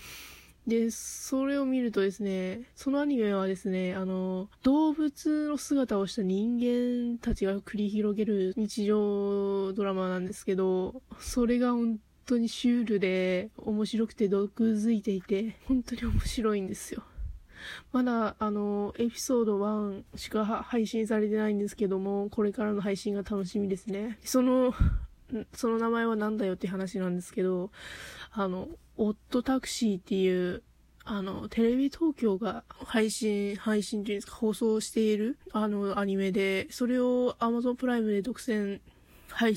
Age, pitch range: 20-39, 200-235 Hz